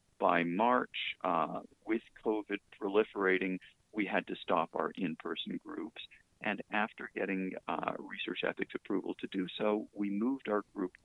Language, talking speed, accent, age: English, 145 wpm, American, 40-59